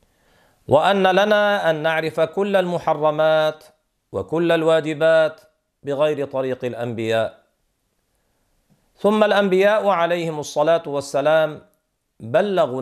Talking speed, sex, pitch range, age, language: 80 wpm, male, 155-205 Hz, 50-69, Arabic